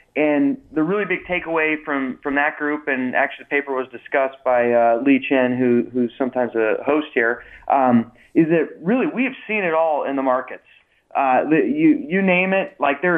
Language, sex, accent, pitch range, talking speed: English, male, American, 130-150 Hz, 205 wpm